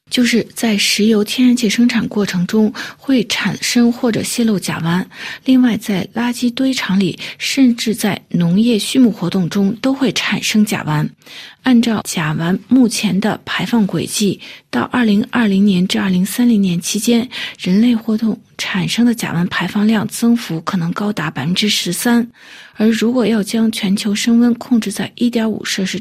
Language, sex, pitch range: Chinese, female, 185-235 Hz